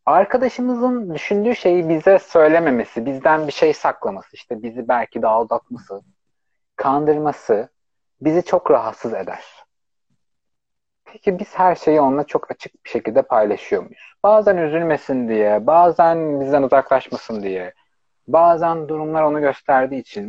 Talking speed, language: 125 wpm, Turkish